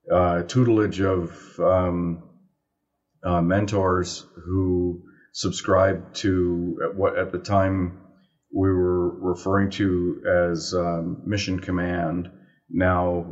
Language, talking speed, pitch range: English, 100 wpm, 85-95 Hz